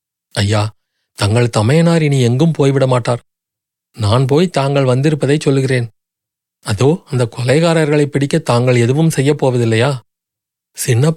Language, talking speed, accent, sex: Tamil, 100 wpm, native, male